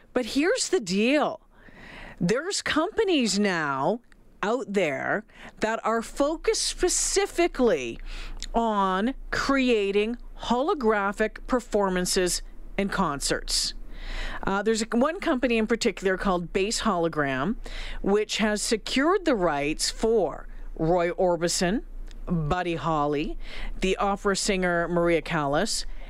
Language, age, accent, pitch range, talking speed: English, 50-69, American, 180-255 Hz, 100 wpm